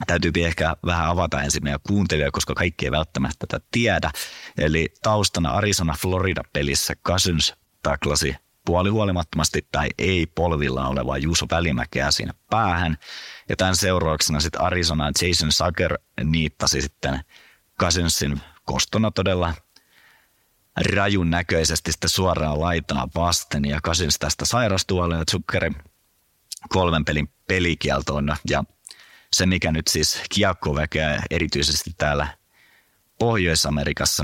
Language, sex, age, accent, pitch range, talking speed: Finnish, male, 30-49, native, 75-90 Hz, 110 wpm